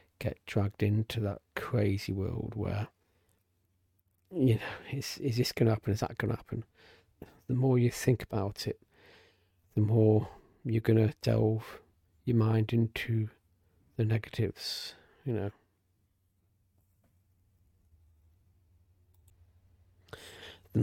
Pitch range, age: 90-110 Hz, 40-59